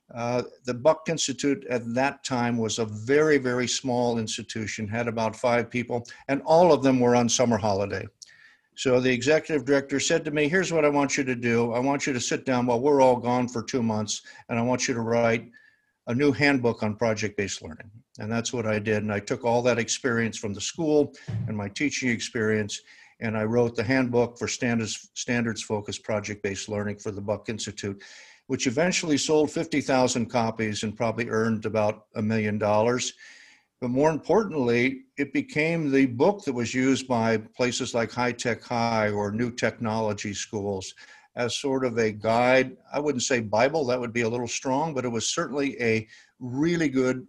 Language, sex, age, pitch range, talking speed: English, male, 50-69, 110-135 Hz, 190 wpm